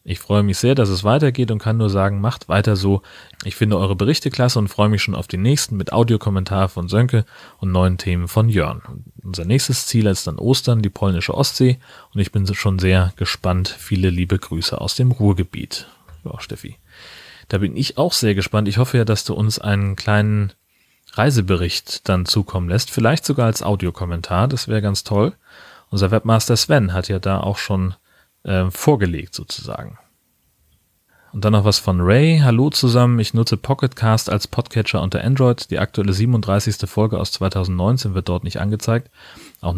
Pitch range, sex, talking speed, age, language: 95-115 Hz, male, 185 wpm, 30-49, German